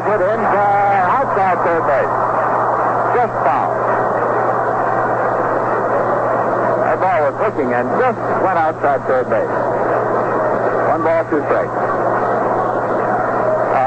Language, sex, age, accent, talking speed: English, male, 60-79, American, 95 wpm